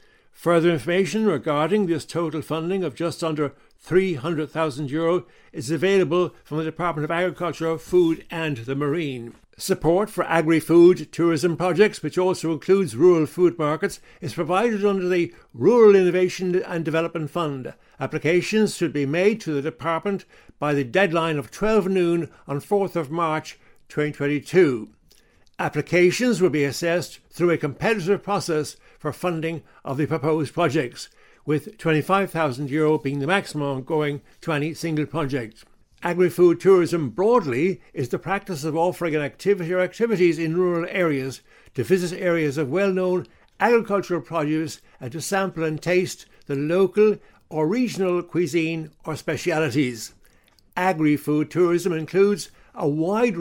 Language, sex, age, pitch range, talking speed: English, male, 60-79, 155-185 Hz, 135 wpm